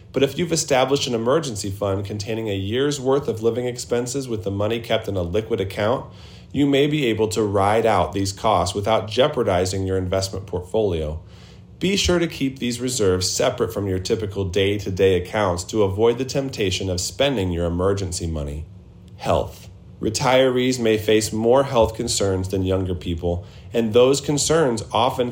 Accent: American